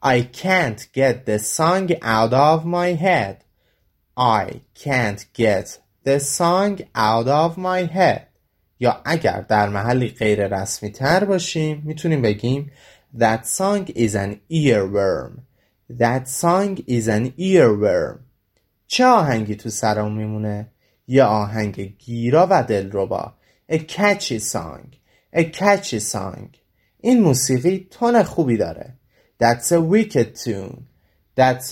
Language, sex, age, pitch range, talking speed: Persian, male, 30-49, 110-170 Hz, 120 wpm